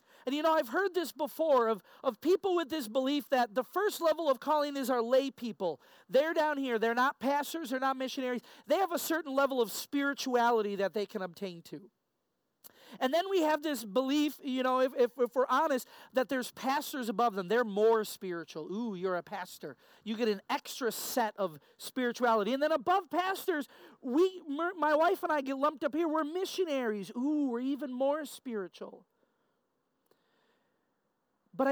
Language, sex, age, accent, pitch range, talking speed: English, male, 40-59, American, 235-305 Hz, 185 wpm